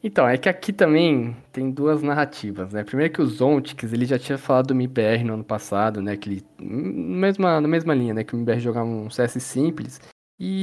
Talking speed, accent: 220 wpm, Brazilian